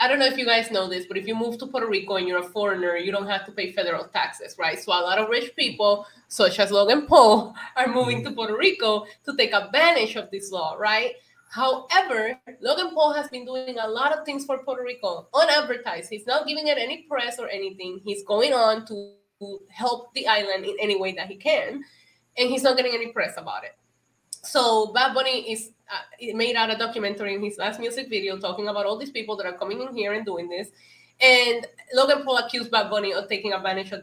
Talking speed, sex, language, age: 225 wpm, female, English, 20-39